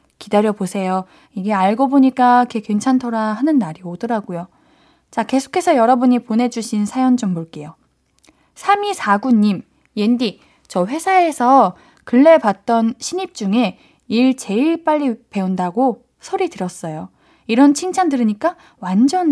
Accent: native